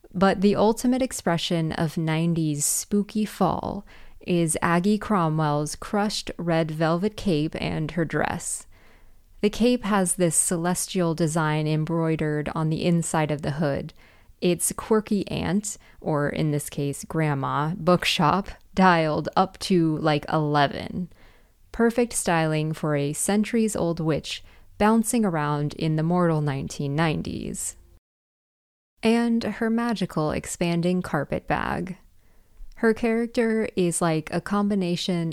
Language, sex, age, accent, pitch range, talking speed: English, female, 20-39, American, 155-200 Hz, 115 wpm